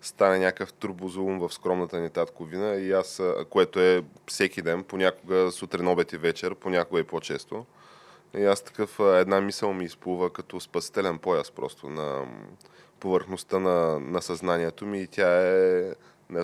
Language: Bulgarian